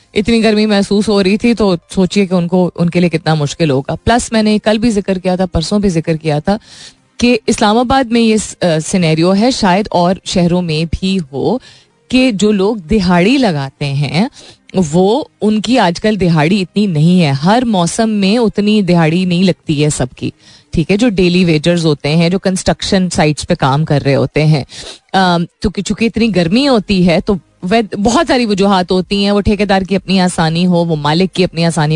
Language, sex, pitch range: Hindi, female, 165-215 Hz